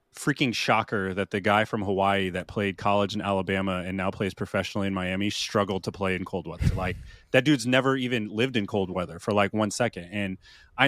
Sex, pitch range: male, 100-125 Hz